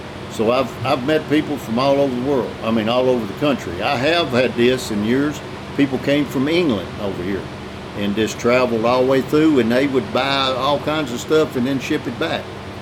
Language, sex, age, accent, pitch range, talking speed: English, male, 60-79, American, 110-140 Hz, 225 wpm